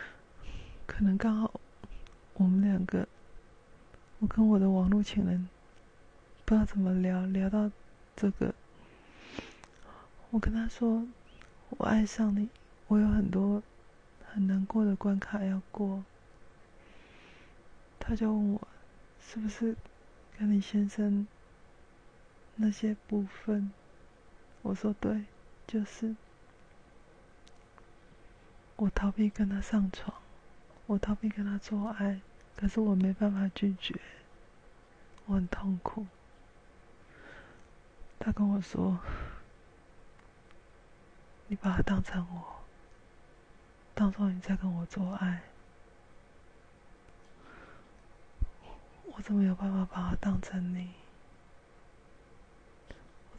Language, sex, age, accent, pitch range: Chinese, female, 20-39, native, 190-215 Hz